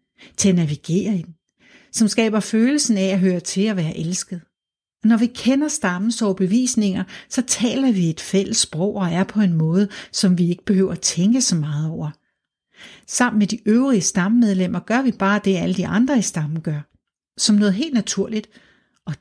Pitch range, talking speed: 180-230 Hz, 185 wpm